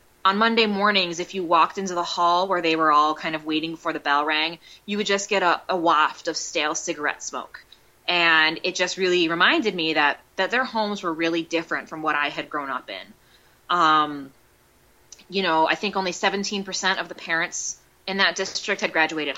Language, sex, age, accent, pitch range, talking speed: English, female, 20-39, American, 160-210 Hz, 205 wpm